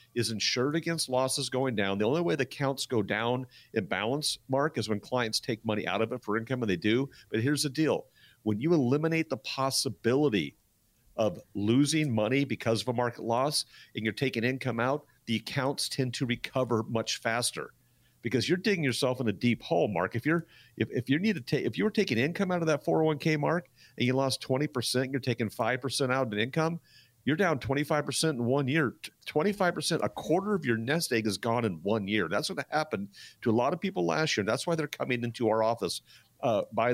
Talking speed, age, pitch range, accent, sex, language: 220 wpm, 50-69, 115-150 Hz, American, male, English